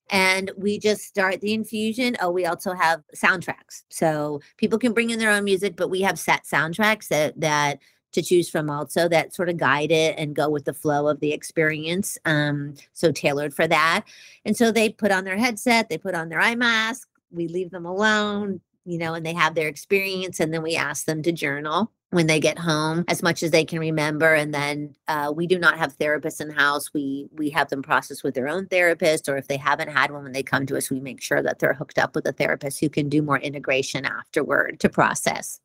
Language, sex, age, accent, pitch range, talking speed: English, female, 40-59, American, 150-185 Hz, 230 wpm